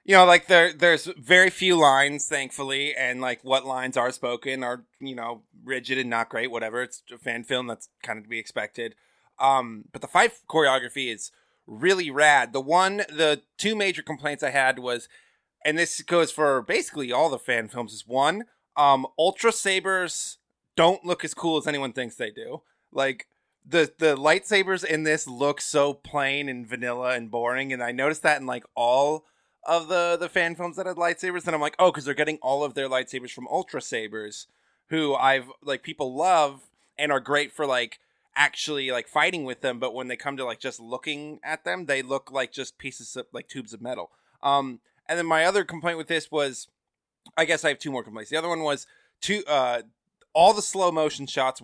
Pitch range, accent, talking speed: 130-165 Hz, American, 205 wpm